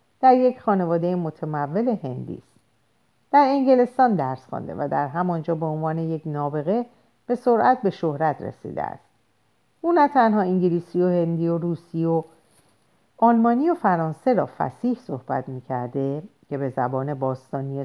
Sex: female